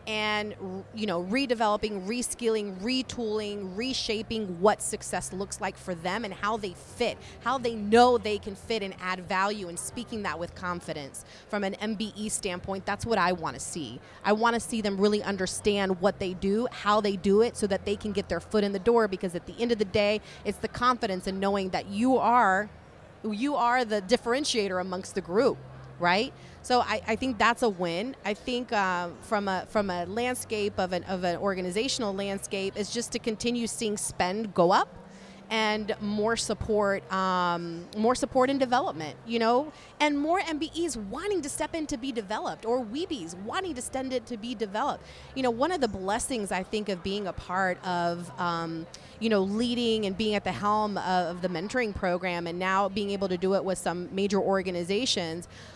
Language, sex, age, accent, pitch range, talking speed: English, female, 30-49, American, 185-230 Hz, 195 wpm